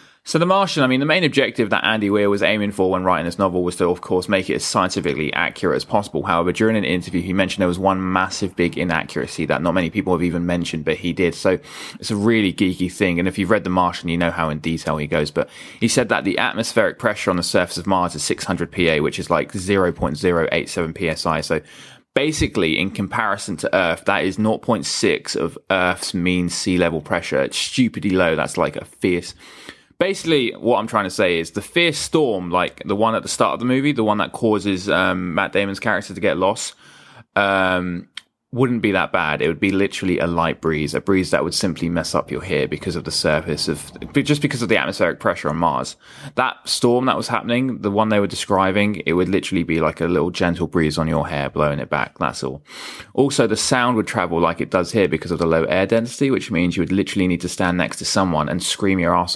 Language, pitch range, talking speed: English, 85-105 Hz, 235 wpm